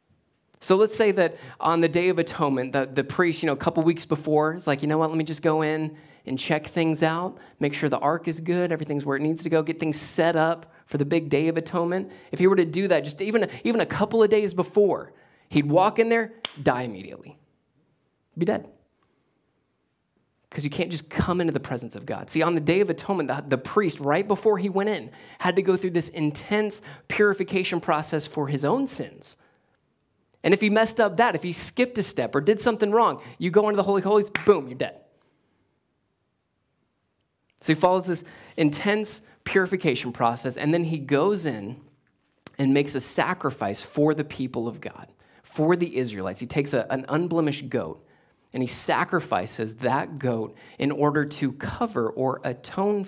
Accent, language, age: American, English, 20-39